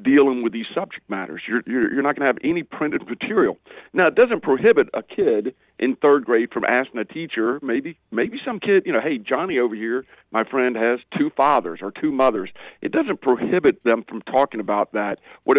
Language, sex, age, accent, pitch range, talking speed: English, male, 50-69, American, 105-130 Hz, 210 wpm